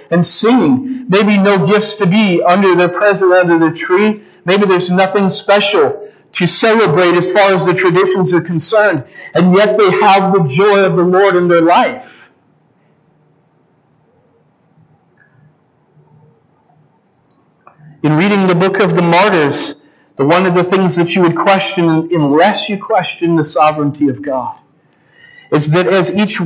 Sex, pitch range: male, 170-200 Hz